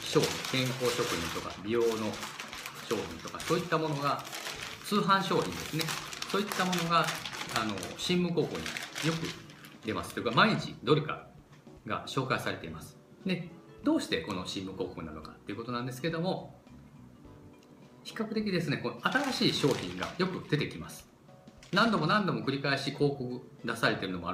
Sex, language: male, Japanese